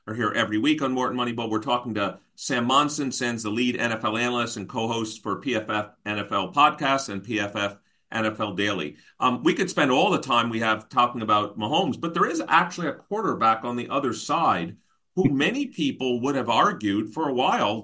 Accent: American